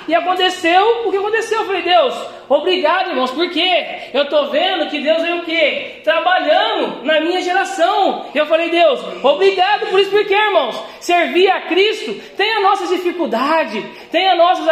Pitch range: 335-390 Hz